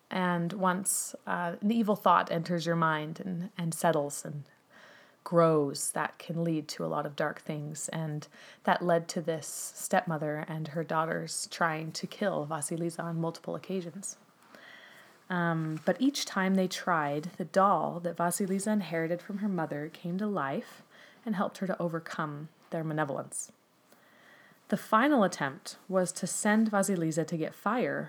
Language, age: English, 20-39